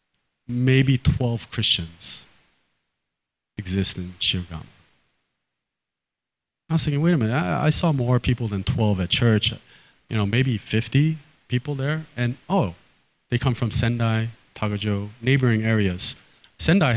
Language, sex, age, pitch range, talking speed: English, male, 30-49, 105-135 Hz, 130 wpm